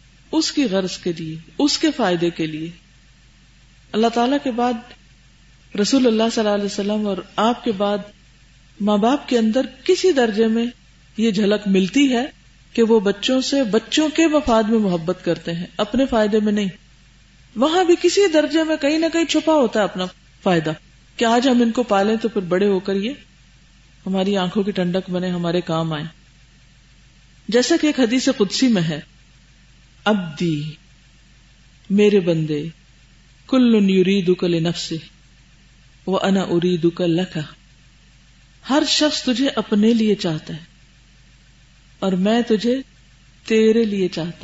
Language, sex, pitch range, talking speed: Urdu, female, 175-245 Hz, 145 wpm